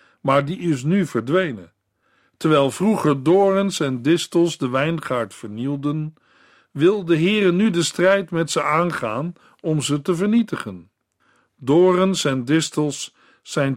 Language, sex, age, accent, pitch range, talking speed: Dutch, male, 50-69, Dutch, 140-180 Hz, 130 wpm